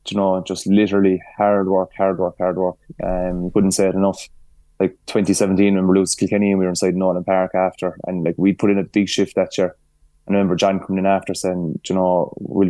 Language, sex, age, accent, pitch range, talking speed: English, male, 20-39, Irish, 90-100 Hz, 235 wpm